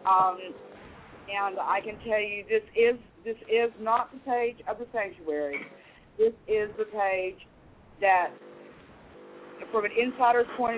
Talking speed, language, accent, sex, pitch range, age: 140 wpm, English, American, female, 180-225 Hz, 50-69